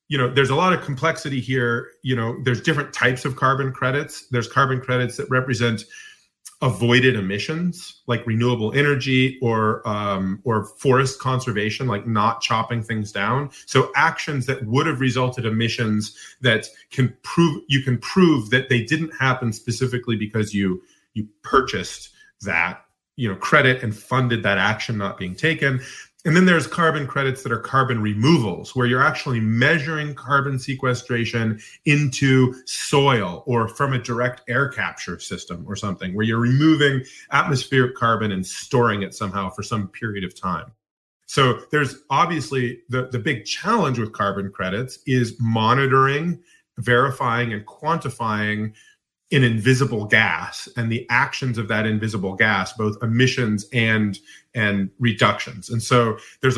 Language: English